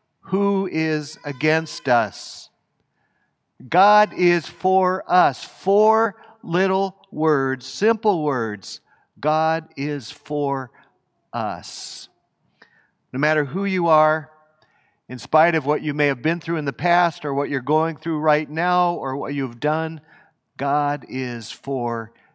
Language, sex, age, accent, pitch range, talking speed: English, male, 50-69, American, 140-180 Hz, 130 wpm